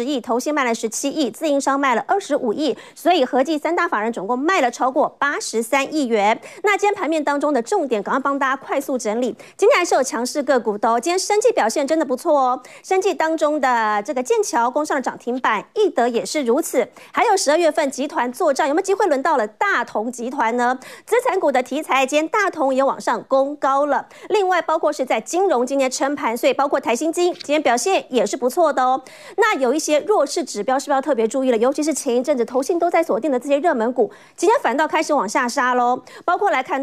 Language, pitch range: Chinese, 255-320 Hz